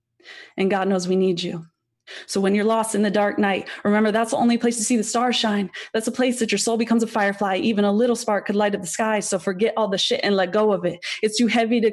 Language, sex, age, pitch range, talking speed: English, female, 20-39, 195-225 Hz, 280 wpm